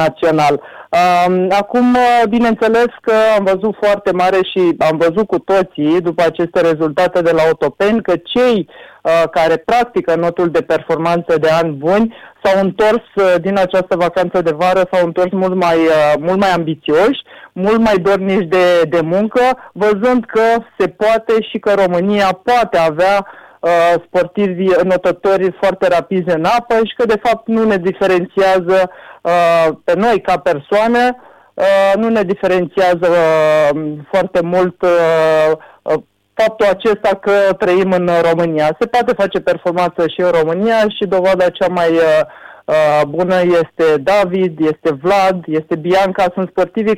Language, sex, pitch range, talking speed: Romanian, male, 170-215 Hz, 140 wpm